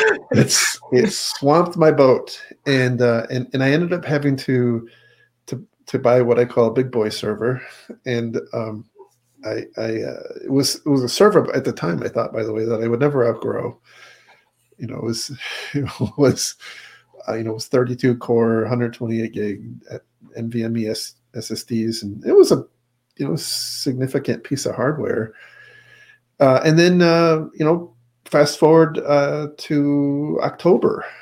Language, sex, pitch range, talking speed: English, male, 115-145 Hz, 175 wpm